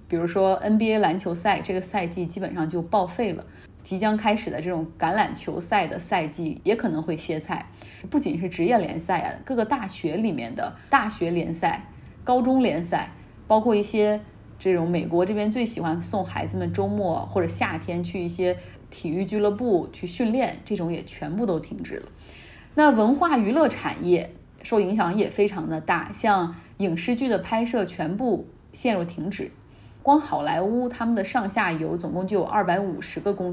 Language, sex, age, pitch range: Chinese, female, 20-39, 170-220 Hz